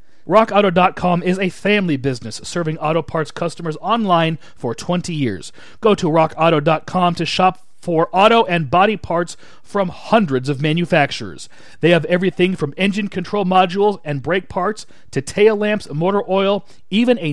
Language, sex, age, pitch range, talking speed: English, male, 40-59, 160-200 Hz, 150 wpm